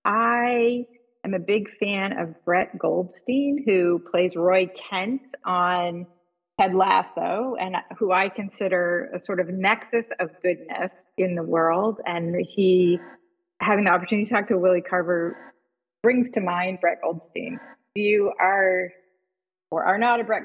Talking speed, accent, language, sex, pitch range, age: 150 wpm, American, English, female, 175-220 Hz, 30-49